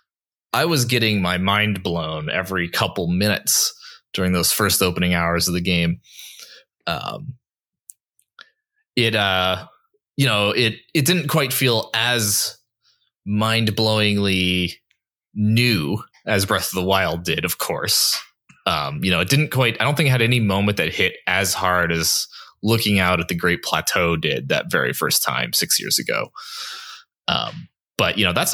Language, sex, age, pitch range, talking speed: English, male, 20-39, 90-130 Hz, 160 wpm